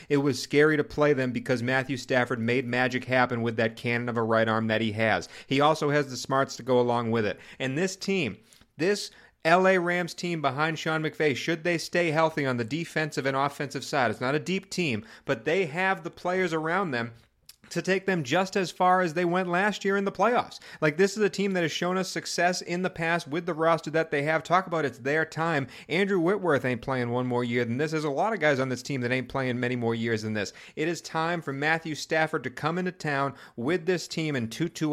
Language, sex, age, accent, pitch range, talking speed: English, male, 30-49, American, 130-170 Hz, 245 wpm